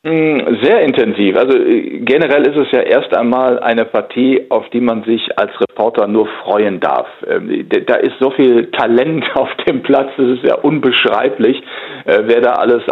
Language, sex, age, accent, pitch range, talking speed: German, male, 40-59, German, 115-145 Hz, 165 wpm